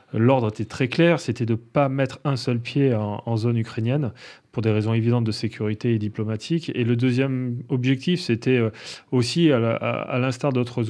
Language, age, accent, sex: French, 30-49, French, male